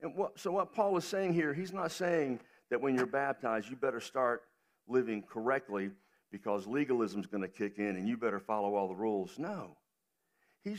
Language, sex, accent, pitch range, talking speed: English, male, American, 105-150 Hz, 195 wpm